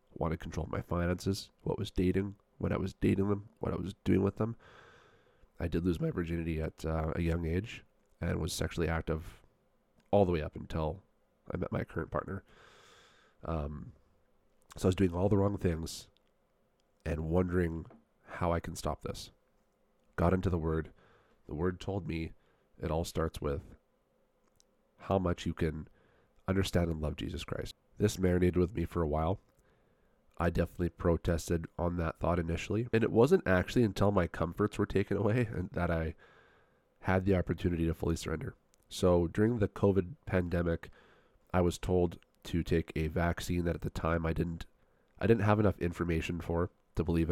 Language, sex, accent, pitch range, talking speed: English, male, American, 80-95 Hz, 175 wpm